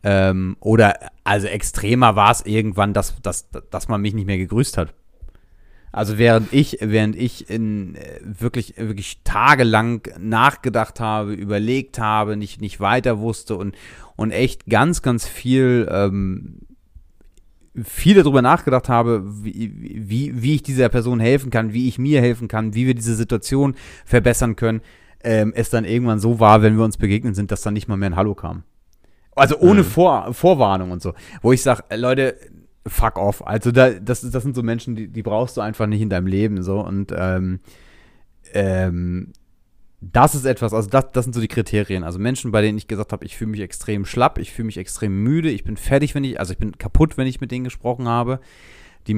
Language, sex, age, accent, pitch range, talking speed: German, male, 30-49, German, 100-120 Hz, 190 wpm